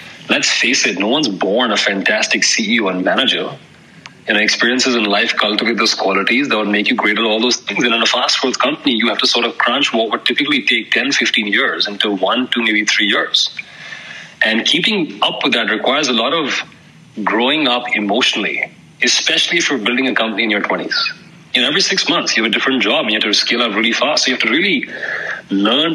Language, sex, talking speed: English, male, 225 wpm